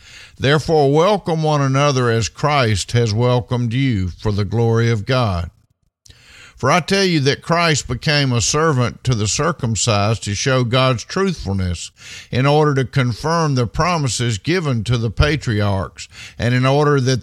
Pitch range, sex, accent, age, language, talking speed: 110-145 Hz, male, American, 50-69, English, 155 wpm